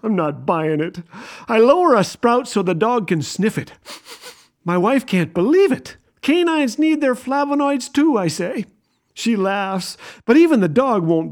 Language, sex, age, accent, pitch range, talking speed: English, male, 50-69, American, 170-240 Hz, 175 wpm